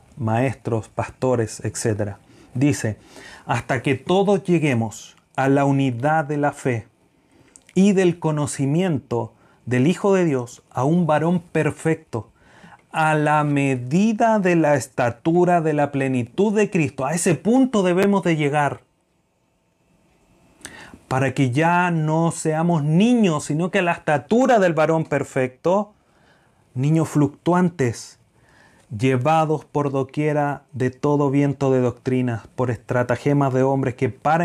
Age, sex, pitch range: 30-49, male, 120-160 Hz